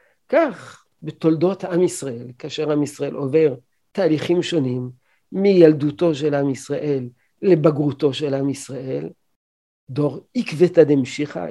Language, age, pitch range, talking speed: Hebrew, 50-69, 140-180 Hz, 110 wpm